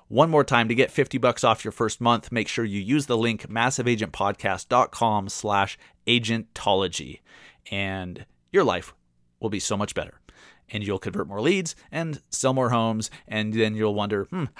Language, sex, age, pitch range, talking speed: English, male, 30-49, 110-135 Hz, 175 wpm